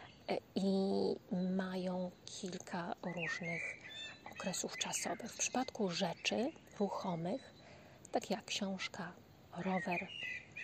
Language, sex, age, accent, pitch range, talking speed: Polish, female, 30-49, native, 190-225 Hz, 80 wpm